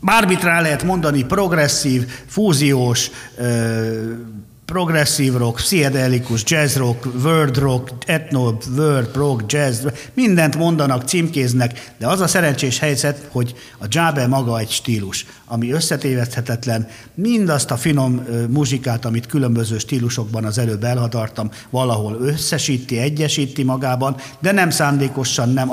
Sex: male